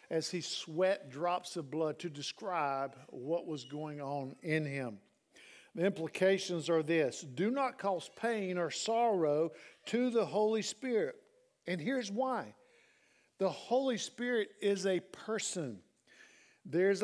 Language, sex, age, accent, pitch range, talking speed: English, male, 50-69, American, 160-210 Hz, 135 wpm